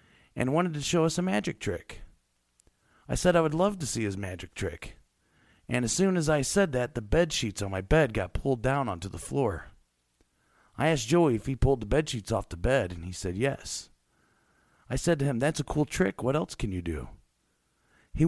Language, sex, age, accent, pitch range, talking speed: English, male, 40-59, American, 100-155 Hz, 220 wpm